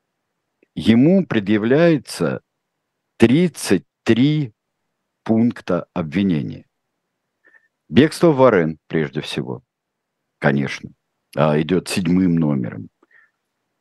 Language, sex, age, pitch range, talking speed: Russian, male, 50-69, 85-115 Hz, 60 wpm